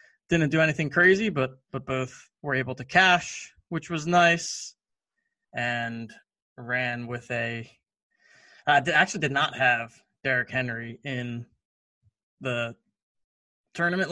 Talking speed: 120 wpm